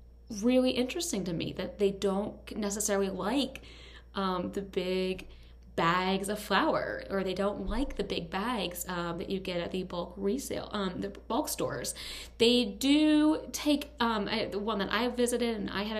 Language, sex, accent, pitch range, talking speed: English, female, American, 195-255 Hz, 175 wpm